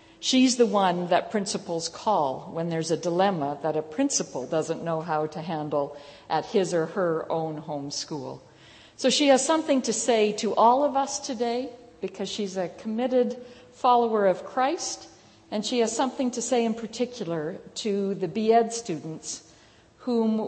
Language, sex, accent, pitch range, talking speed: English, female, American, 175-235 Hz, 165 wpm